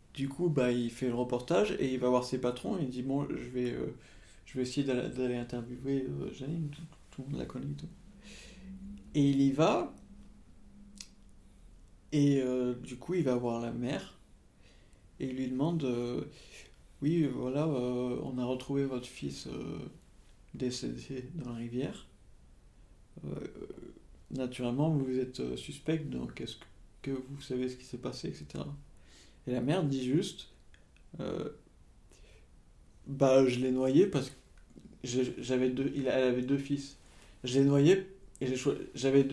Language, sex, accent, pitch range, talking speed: French, male, French, 125-140 Hz, 150 wpm